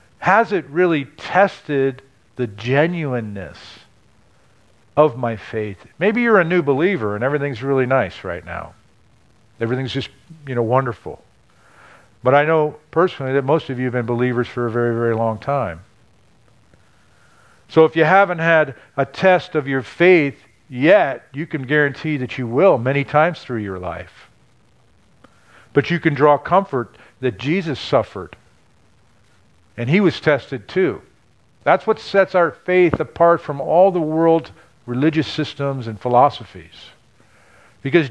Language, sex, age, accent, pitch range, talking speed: English, male, 50-69, American, 120-170 Hz, 145 wpm